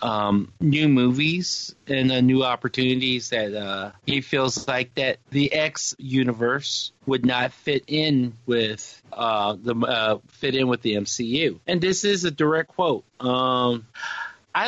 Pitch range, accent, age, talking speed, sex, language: 120-150 Hz, American, 40-59, 150 wpm, male, English